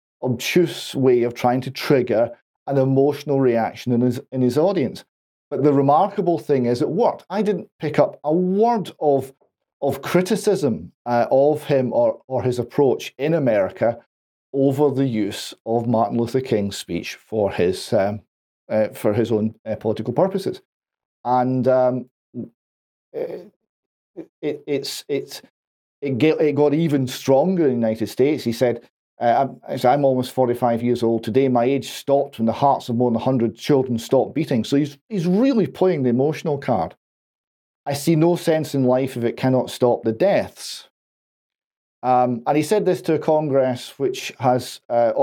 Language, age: English, 40-59